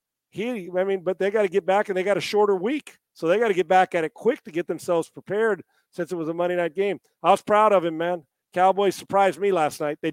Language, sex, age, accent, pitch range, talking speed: English, male, 40-59, American, 140-175 Hz, 280 wpm